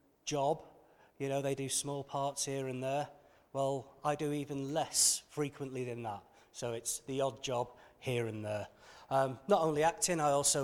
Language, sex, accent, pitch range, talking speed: Italian, male, British, 130-150 Hz, 180 wpm